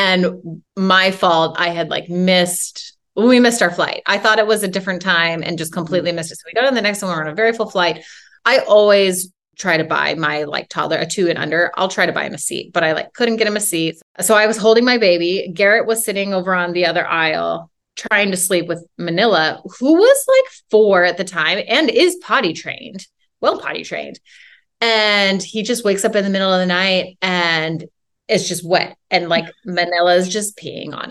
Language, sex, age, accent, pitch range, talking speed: English, female, 30-49, American, 175-225 Hz, 230 wpm